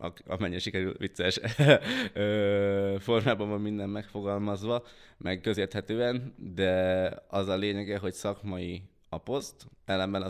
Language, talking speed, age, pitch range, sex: Hungarian, 100 wpm, 20-39, 95-110 Hz, male